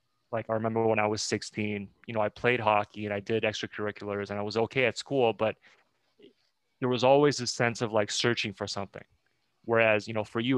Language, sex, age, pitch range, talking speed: English, male, 20-39, 100-115 Hz, 215 wpm